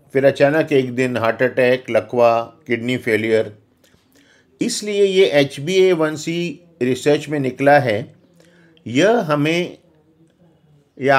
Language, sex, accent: Hindi, male, native